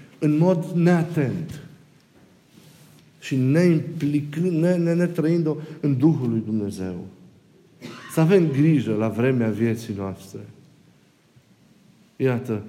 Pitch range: 115-160 Hz